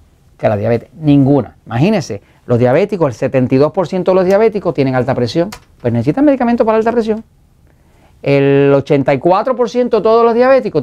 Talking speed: 160 wpm